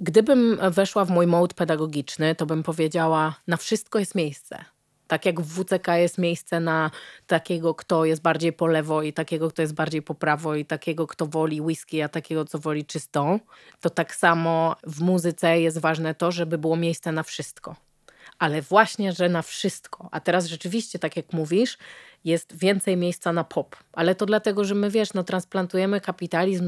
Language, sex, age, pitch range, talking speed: Polish, female, 30-49, 160-195 Hz, 180 wpm